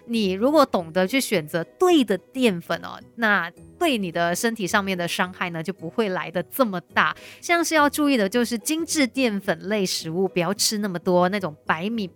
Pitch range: 180-245 Hz